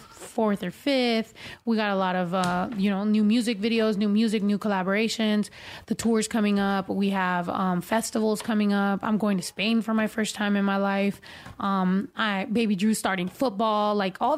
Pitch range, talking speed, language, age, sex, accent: 200-230 Hz, 195 wpm, English, 20-39, female, American